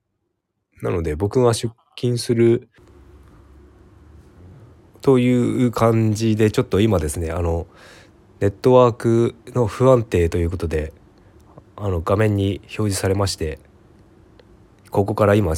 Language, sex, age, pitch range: Japanese, male, 20-39, 85-110 Hz